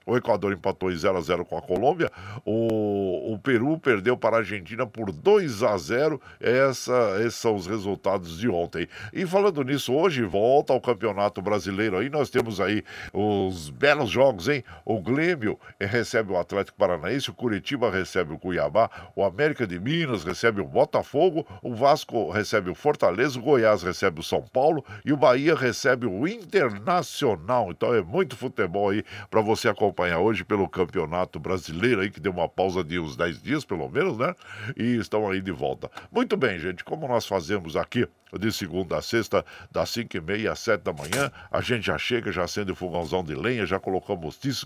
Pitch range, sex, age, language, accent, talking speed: 95-125 Hz, male, 60-79, Portuguese, Brazilian, 180 wpm